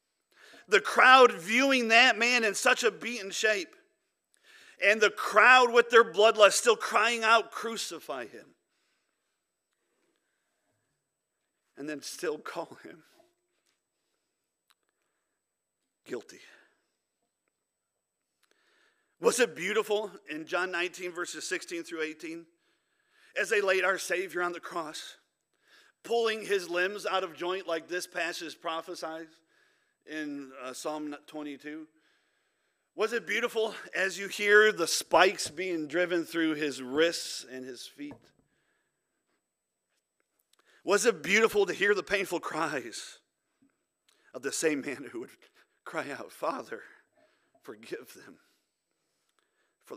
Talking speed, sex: 115 wpm, male